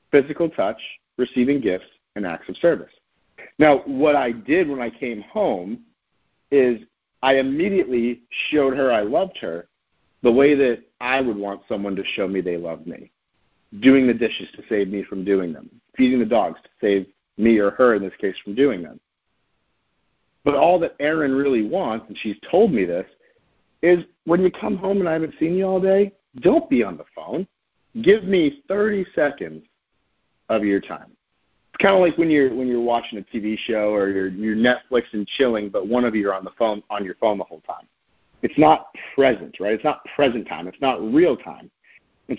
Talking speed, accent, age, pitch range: 200 wpm, American, 50-69, 105-160 Hz